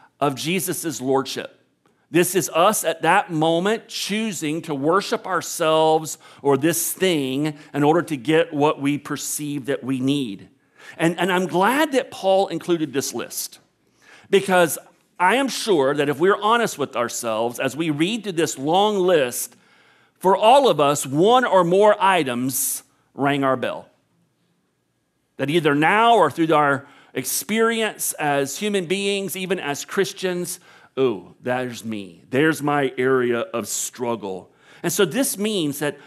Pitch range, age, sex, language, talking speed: 145-200 Hz, 50-69, male, English, 150 wpm